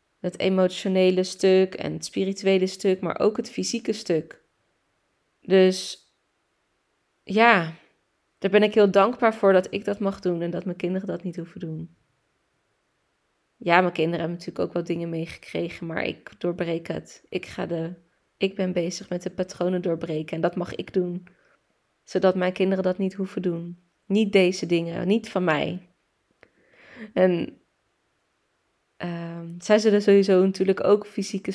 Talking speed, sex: 155 wpm, female